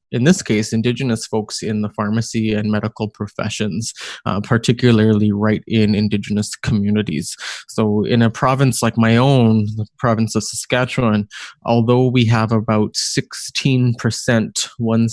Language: English